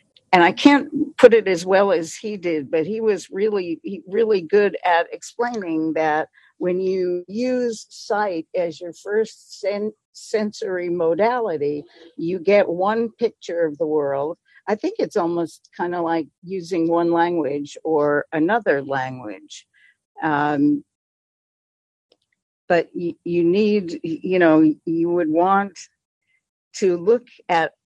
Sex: female